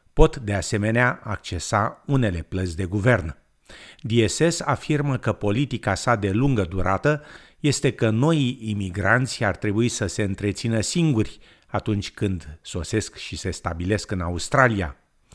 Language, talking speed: Romanian, 135 wpm